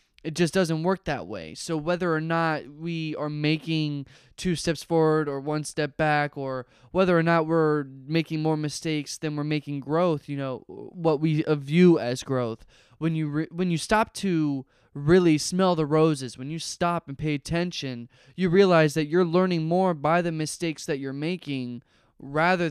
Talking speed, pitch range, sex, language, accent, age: 175 wpm, 140-165 Hz, male, English, American, 20-39